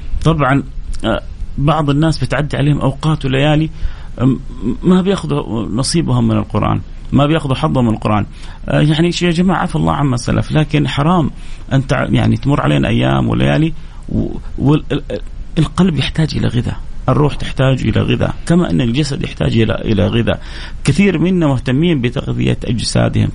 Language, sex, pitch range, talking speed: Arabic, male, 110-160 Hz, 135 wpm